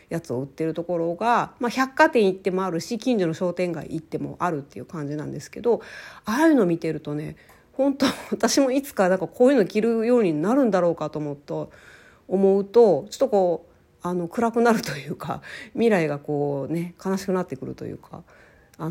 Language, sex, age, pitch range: Japanese, female, 40-59, 170-245 Hz